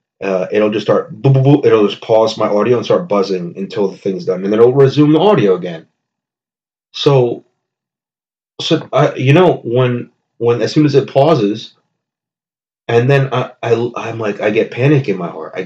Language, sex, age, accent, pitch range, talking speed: English, male, 30-49, American, 100-155 Hz, 200 wpm